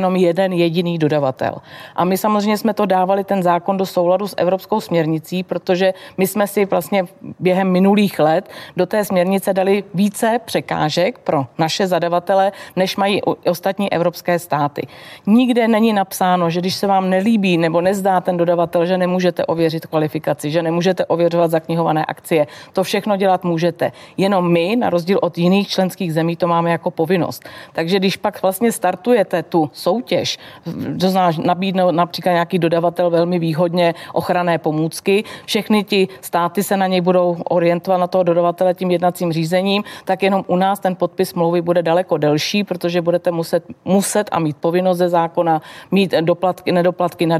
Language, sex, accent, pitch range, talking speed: Czech, female, native, 170-190 Hz, 165 wpm